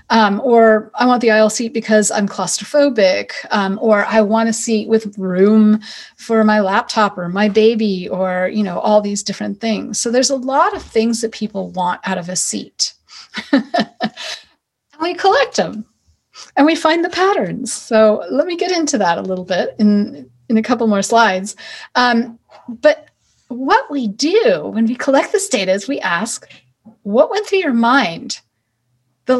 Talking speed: 180 wpm